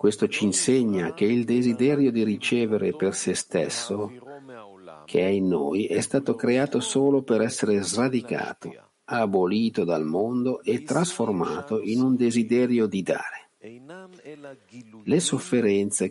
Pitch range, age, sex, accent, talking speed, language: 100-135 Hz, 50-69, male, native, 125 wpm, Italian